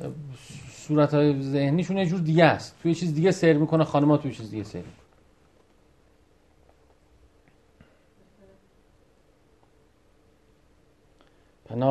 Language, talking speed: Persian, 85 wpm